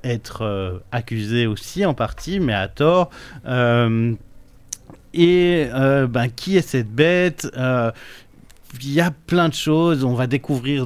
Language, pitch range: French, 115-145 Hz